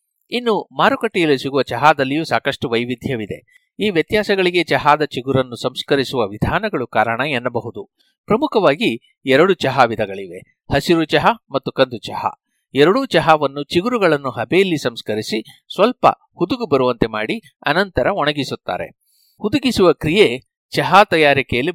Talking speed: 95 wpm